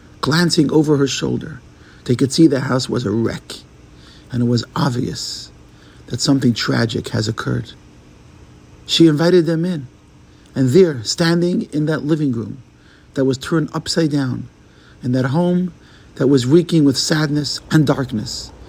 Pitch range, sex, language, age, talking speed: 120-155 Hz, male, English, 50-69, 150 wpm